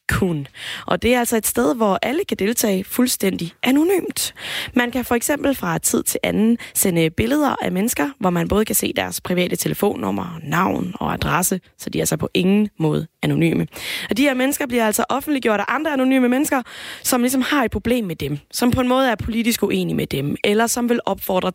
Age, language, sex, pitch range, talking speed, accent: 20-39, Danish, female, 180-240 Hz, 210 wpm, native